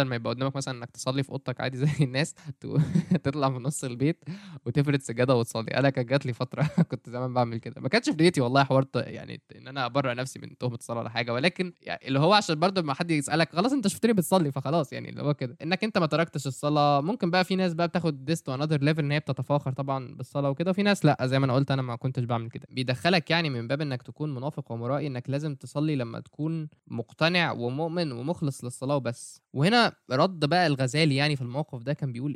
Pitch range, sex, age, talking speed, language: 130-170 Hz, male, 10-29, 225 wpm, Arabic